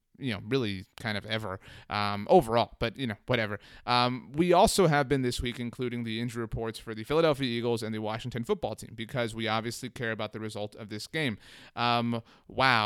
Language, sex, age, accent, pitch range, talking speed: English, male, 30-49, American, 110-125 Hz, 205 wpm